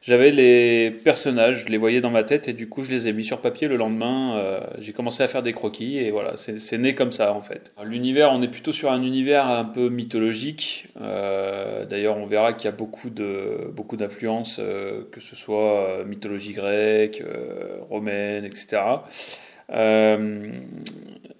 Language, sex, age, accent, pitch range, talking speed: French, male, 30-49, French, 105-125 Hz, 185 wpm